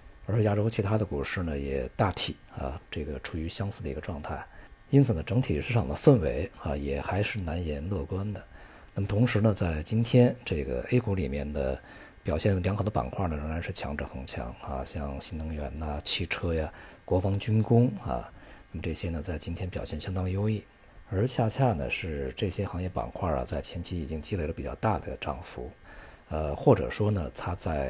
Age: 50-69